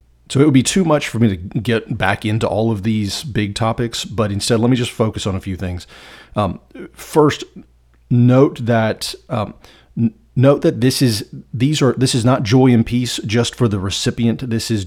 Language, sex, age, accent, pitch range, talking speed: English, male, 30-49, American, 95-115 Hz, 205 wpm